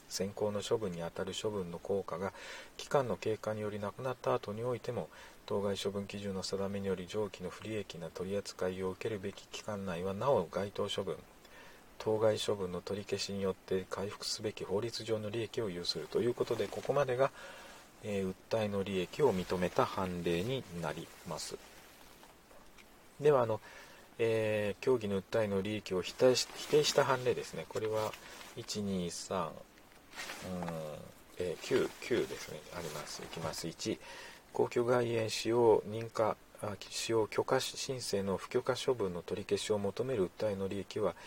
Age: 40-59